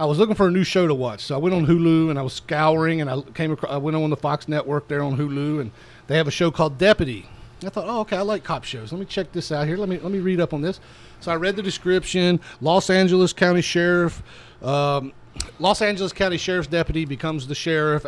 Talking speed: 260 wpm